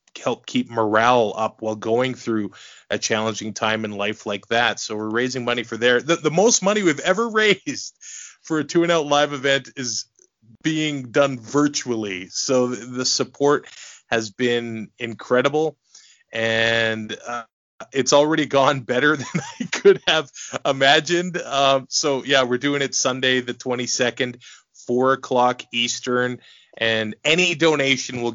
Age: 20-39